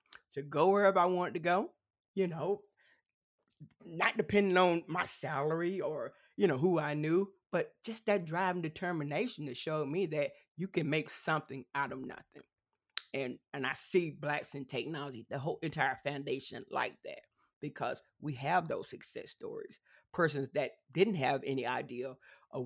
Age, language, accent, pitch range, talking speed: 30-49, English, American, 140-180 Hz, 165 wpm